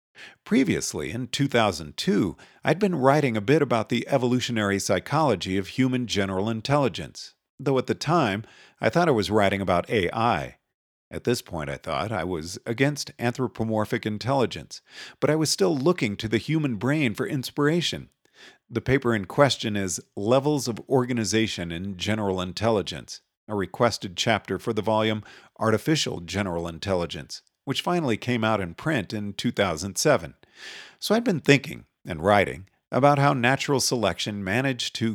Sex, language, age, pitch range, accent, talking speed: male, English, 50-69, 105-135 Hz, American, 150 wpm